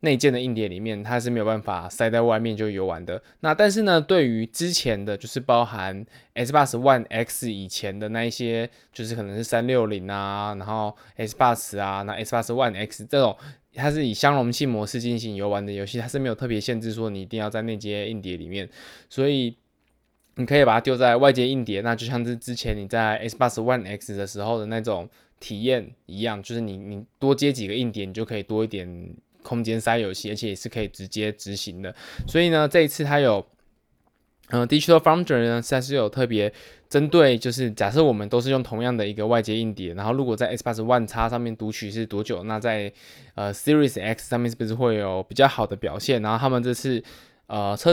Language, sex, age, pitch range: Chinese, male, 20-39, 105-125 Hz